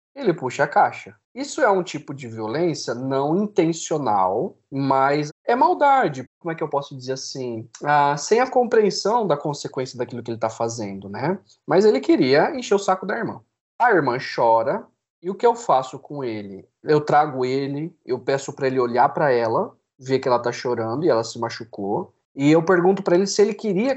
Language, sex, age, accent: Portuguese, male, 20-39, Brazilian